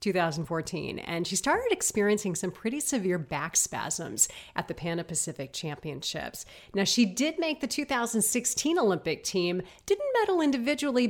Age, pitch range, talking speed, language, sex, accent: 40-59, 175-260 Hz, 140 wpm, English, female, American